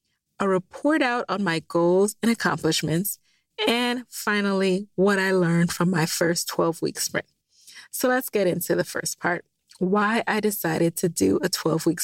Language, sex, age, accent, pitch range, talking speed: English, female, 30-49, American, 175-225 Hz, 160 wpm